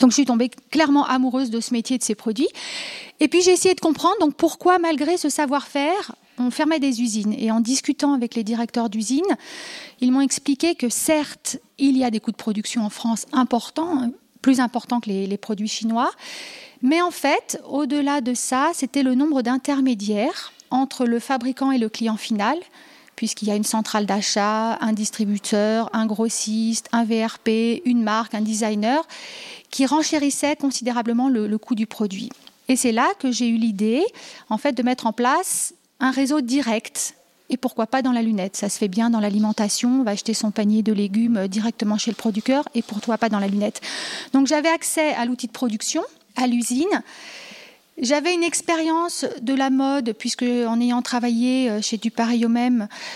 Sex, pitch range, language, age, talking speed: female, 225-285 Hz, French, 40-59, 185 wpm